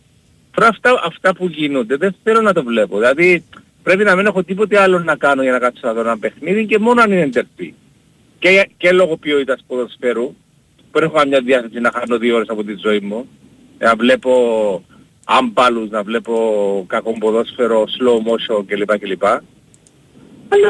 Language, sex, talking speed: Greek, male, 165 wpm